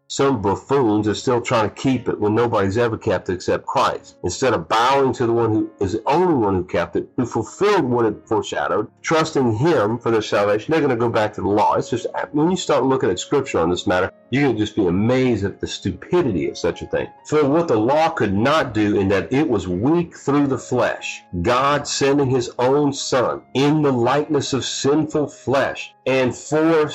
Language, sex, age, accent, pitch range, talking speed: English, male, 50-69, American, 110-145 Hz, 220 wpm